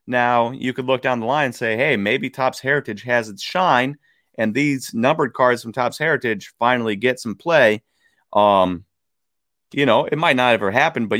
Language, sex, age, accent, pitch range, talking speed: English, male, 30-49, American, 105-135 Hz, 200 wpm